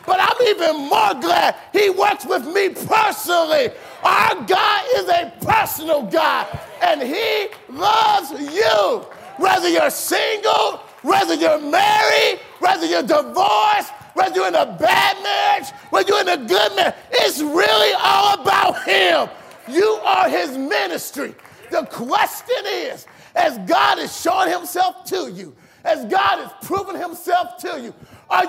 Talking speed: 145 wpm